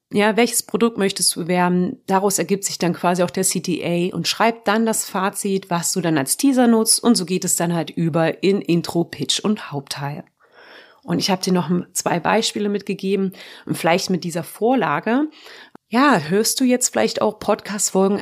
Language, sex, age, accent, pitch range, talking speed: German, female, 30-49, German, 175-225 Hz, 190 wpm